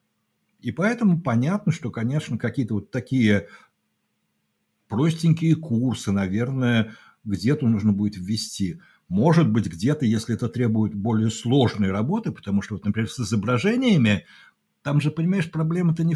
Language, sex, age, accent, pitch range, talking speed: Russian, male, 60-79, native, 110-155 Hz, 130 wpm